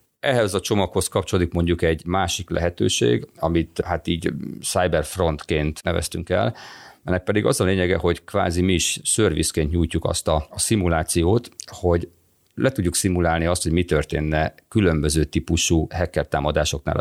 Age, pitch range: 40-59, 80-95 Hz